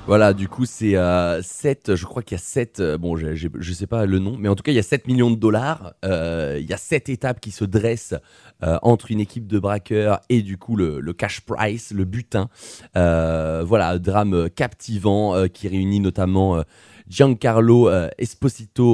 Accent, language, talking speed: French, French, 195 wpm